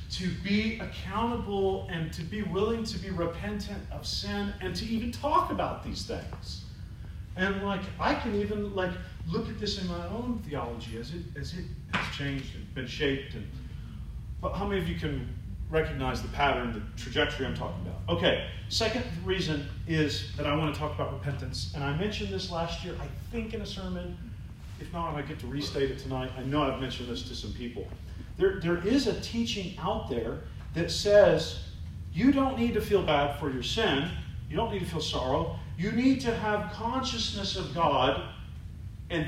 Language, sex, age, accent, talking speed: English, male, 40-59, American, 195 wpm